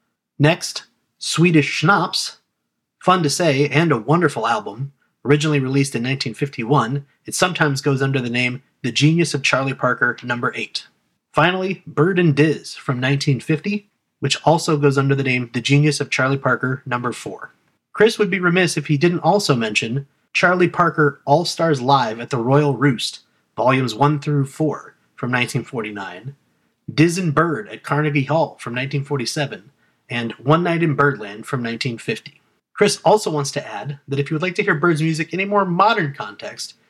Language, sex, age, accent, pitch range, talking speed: English, male, 30-49, American, 135-170 Hz, 170 wpm